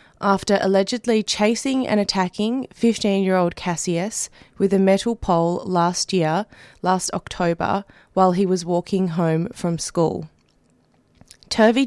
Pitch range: 175-210 Hz